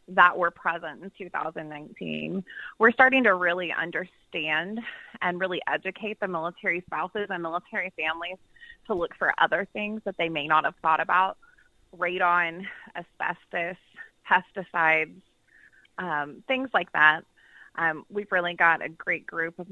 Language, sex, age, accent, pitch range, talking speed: English, female, 20-39, American, 165-210 Hz, 140 wpm